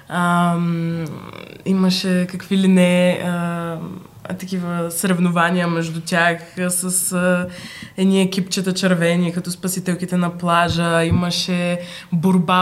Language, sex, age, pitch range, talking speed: Bulgarian, female, 20-39, 165-200 Hz, 100 wpm